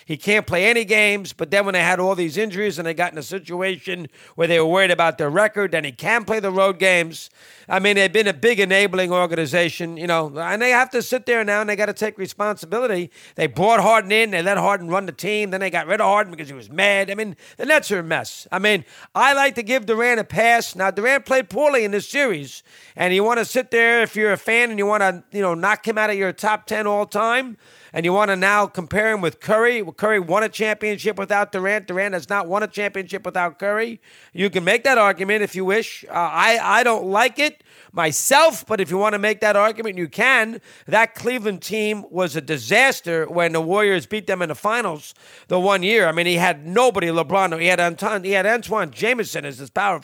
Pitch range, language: 180-215 Hz, English